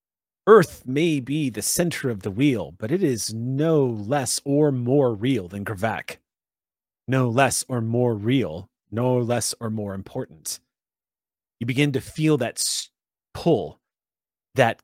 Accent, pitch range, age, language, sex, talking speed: American, 110-135 Hz, 30-49, English, male, 140 wpm